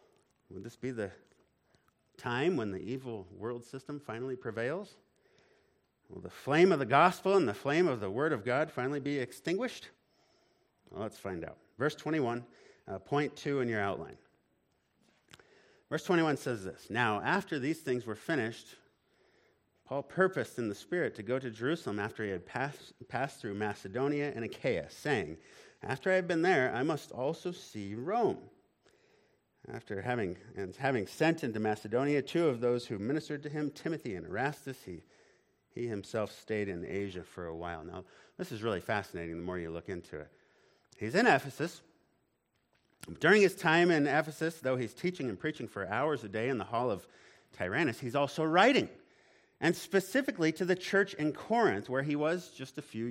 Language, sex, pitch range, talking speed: English, male, 110-155 Hz, 175 wpm